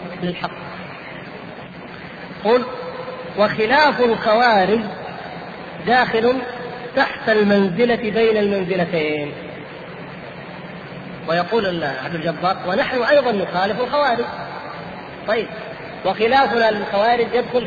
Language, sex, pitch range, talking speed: Arabic, female, 185-230 Hz, 70 wpm